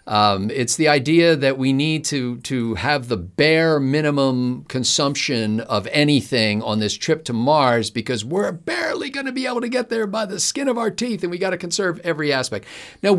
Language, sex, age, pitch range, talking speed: English, male, 50-69, 120-155 Hz, 195 wpm